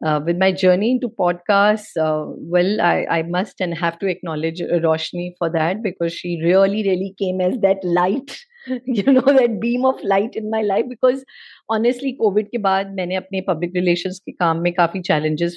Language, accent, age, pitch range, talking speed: Hindi, native, 30-49, 165-210 Hz, 190 wpm